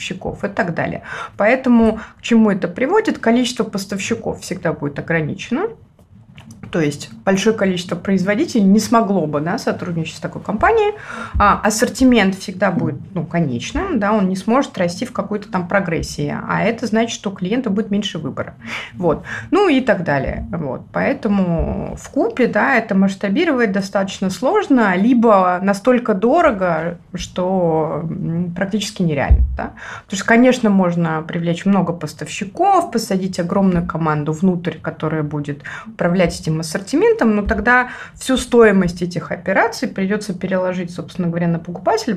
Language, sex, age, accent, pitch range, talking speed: Russian, female, 30-49, native, 170-225 Hz, 140 wpm